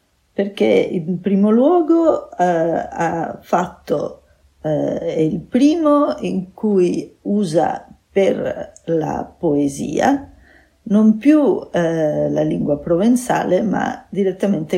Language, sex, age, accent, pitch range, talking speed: Italian, female, 50-69, native, 170-230 Hz, 90 wpm